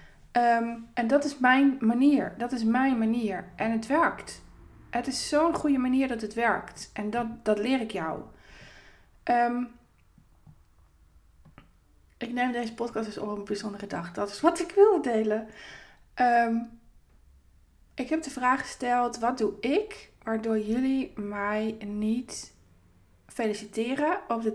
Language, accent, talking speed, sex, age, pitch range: Dutch, Dutch, 135 wpm, female, 20-39, 200-240 Hz